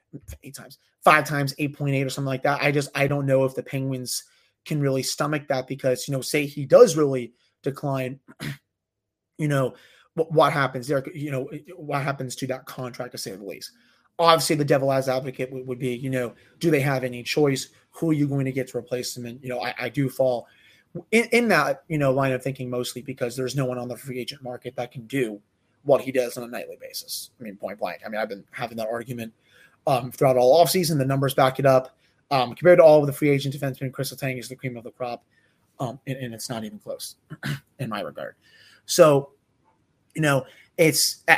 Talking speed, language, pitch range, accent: 230 wpm, English, 125-150 Hz, American